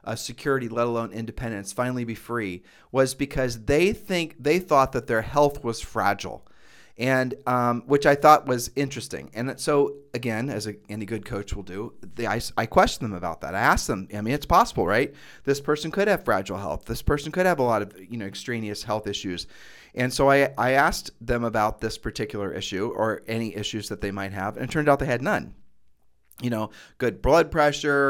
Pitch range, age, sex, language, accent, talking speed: 110-140 Hz, 40-59, male, English, American, 210 wpm